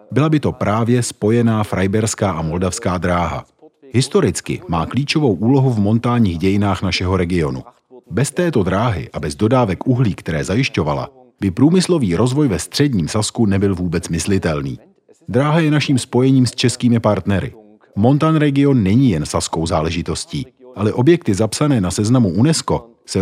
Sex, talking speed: male, 145 wpm